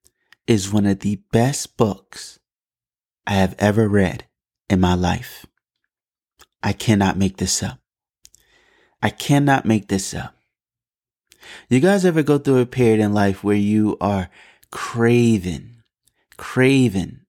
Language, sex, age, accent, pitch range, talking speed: English, male, 30-49, American, 100-125 Hz, 130 wpm